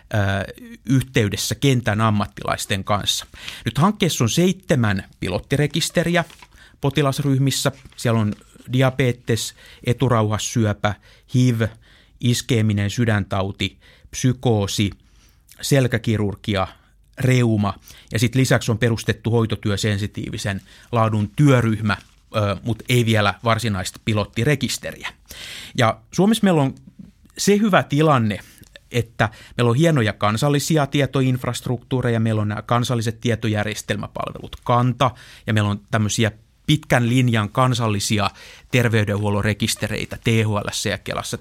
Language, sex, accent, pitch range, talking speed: Finnish, male, native, 105-135 Hz, 95 wpm